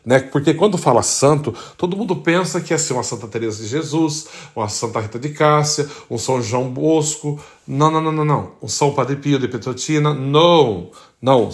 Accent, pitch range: Brazilian, 120-150 Hz